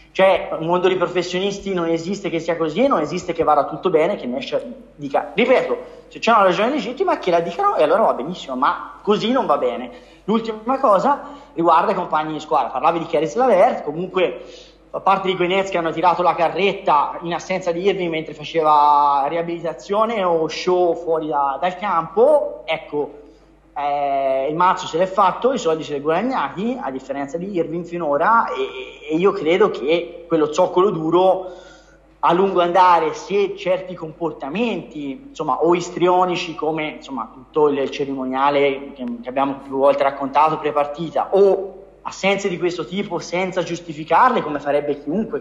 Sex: male